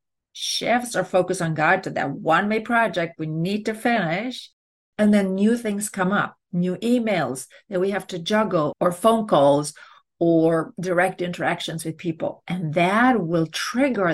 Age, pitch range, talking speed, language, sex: 40-59, 160-210 Hz, 165 wpm, English, female